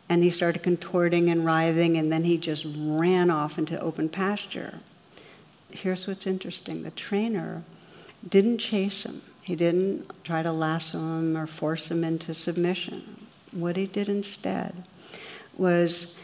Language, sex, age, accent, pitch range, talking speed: English, female, 60-79, American, 165-190 Hz, 145 wpm